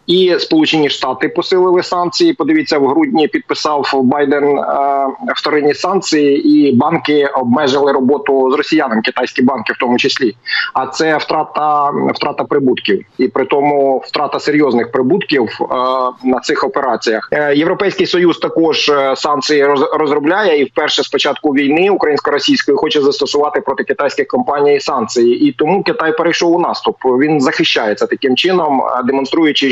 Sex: male